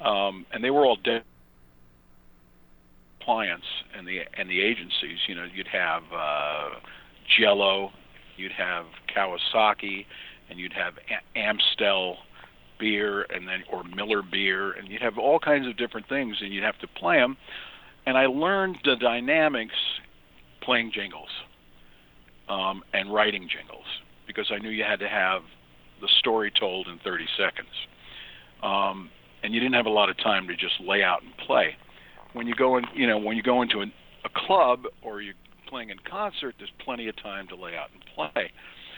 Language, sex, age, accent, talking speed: English, male, 50-69, American, 170 wpm